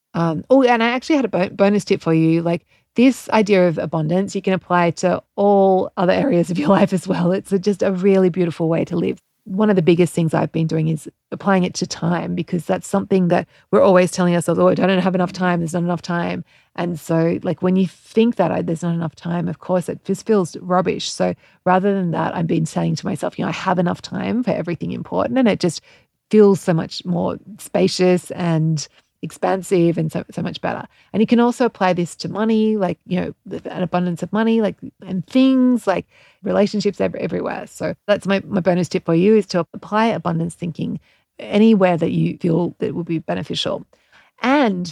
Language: English